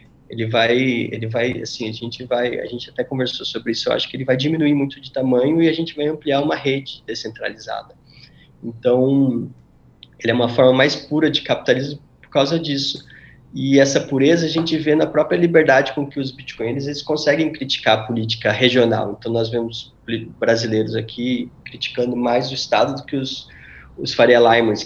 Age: 20-39